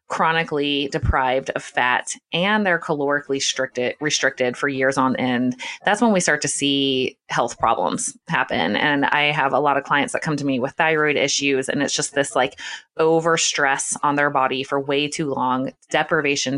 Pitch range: 140-165 Hz